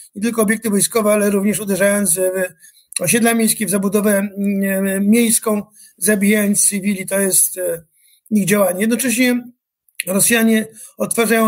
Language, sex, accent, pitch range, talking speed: Polish, male, native, 205-230 Hz, 115 wpm